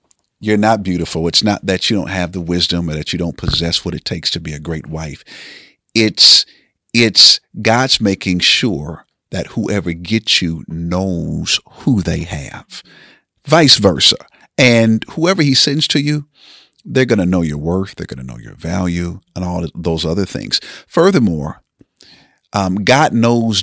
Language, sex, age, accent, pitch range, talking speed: English, male, 50-69, American, 90-115 Hz, 165 wpm